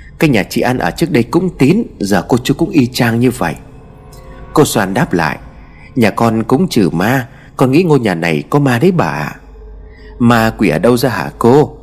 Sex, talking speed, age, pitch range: male, 220 wpm, 30-49, 100-150 Hz